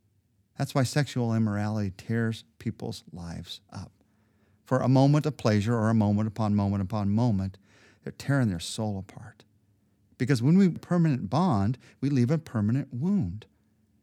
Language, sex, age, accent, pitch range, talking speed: English, male, 40-59, American, 105-135 Hz, 150 wpm